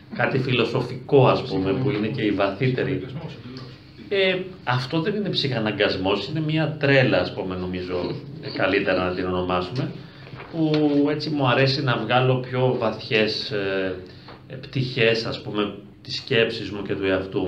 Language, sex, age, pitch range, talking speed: Greek, male, 40-59, 105-140 Hz, 145 wpm